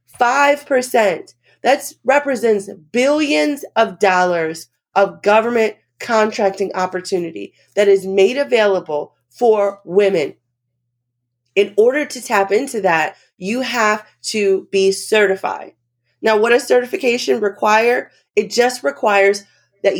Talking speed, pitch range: 110 wpm, 170-235 Hz